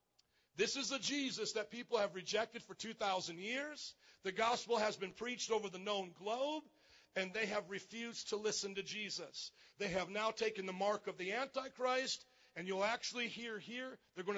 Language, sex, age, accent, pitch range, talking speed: English, male, 50-69, American, 180-245 Hz, 185 wpm